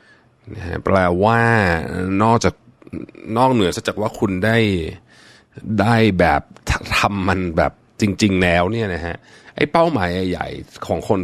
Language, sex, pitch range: Thai, male, 90-120 Hz